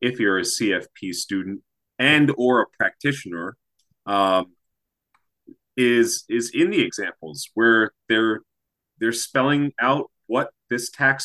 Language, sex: English, male